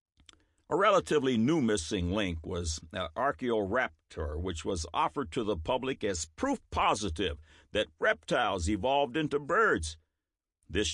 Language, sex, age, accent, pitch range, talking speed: English, male, 60-79, American, 80-130 Hz, 120 wpm